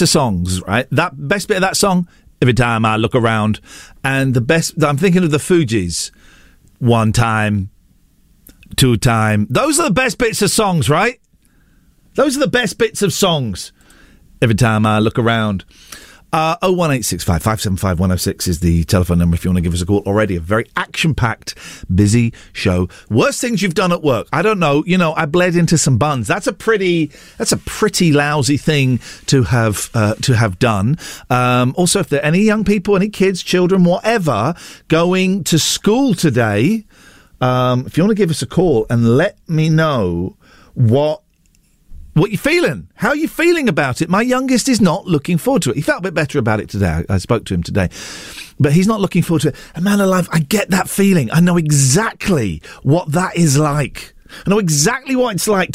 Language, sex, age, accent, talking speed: English, male, 50-69, British, 200 wpm